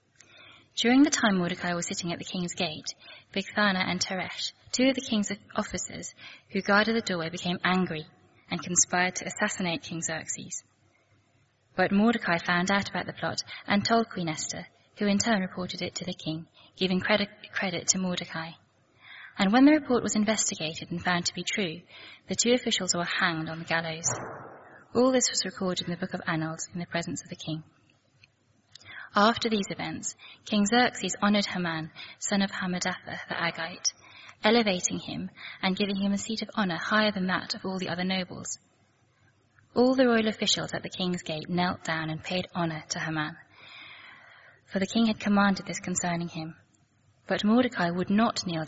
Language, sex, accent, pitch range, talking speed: English, female, British, 165-210 Hz, 180 wpm